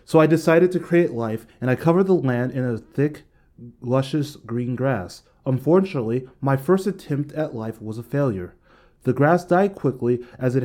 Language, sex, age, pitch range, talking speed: English, male, 30-49, 120-155 Hz, 180 wpm